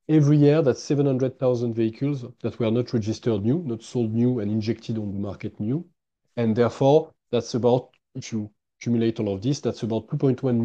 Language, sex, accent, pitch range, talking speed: Italian, male, French, 110-140 Hz, 180 wpm